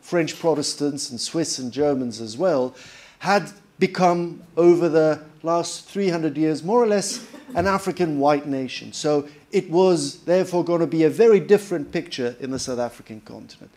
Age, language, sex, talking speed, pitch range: 50-69, French, male, 165 wpm, 135-175 Hz